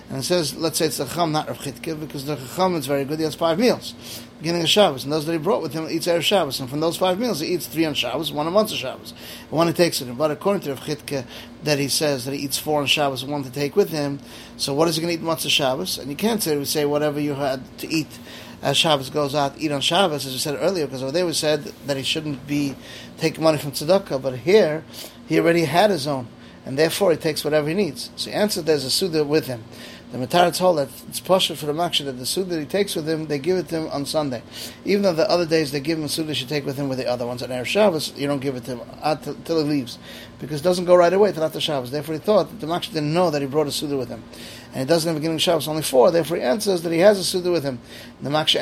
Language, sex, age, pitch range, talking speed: English, male, 30-49, 140-170 Hz, 300 wpm